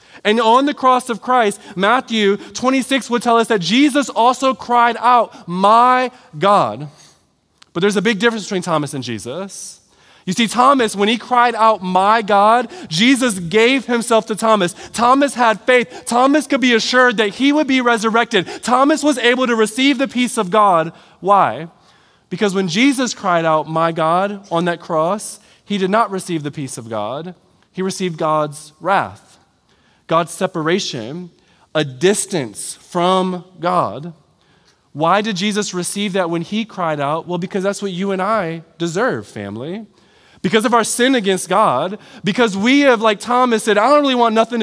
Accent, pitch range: American, 185-245 Hz